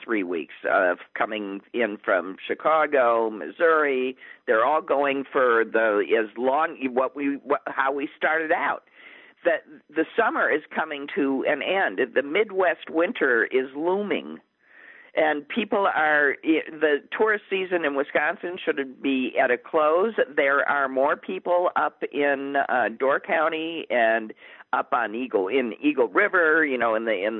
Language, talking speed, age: English, 150 wpm, 50-69